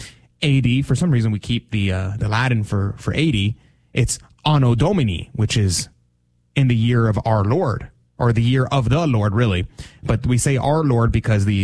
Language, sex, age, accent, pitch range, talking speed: English, male, 30-49, American, 105-130 Hz, 195 wpm